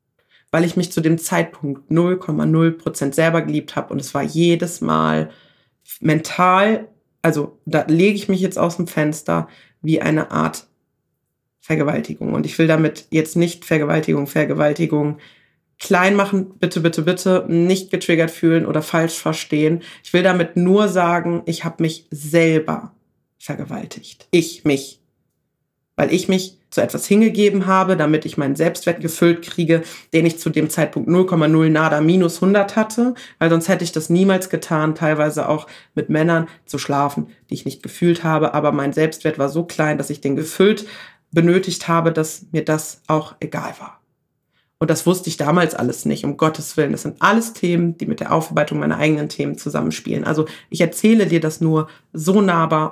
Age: 30-49